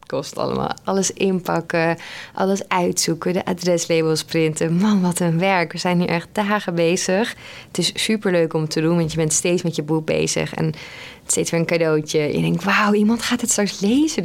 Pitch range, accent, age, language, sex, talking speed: 160-195 Hz, Dutch, 20-39, Dutch, female, 195 wpm